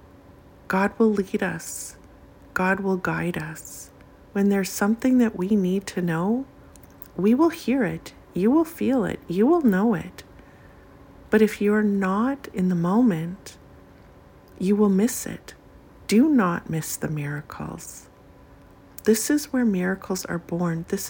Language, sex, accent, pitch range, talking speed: English, female, American, 165-210 Hz, 145 wpm